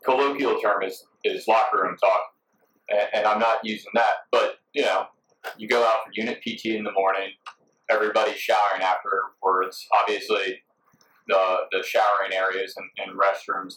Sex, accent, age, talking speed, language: male, American, 30-49, 155 wpm, English